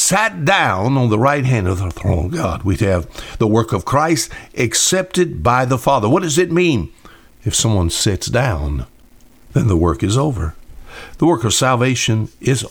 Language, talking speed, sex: English, 185 wpm, male